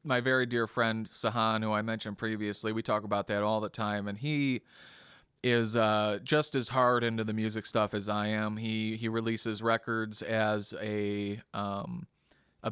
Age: 30-49